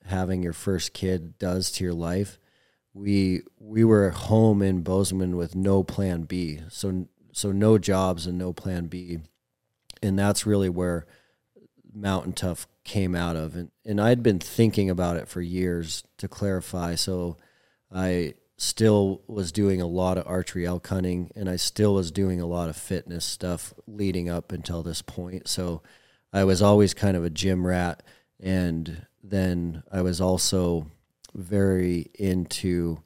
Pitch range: 85-100 Hz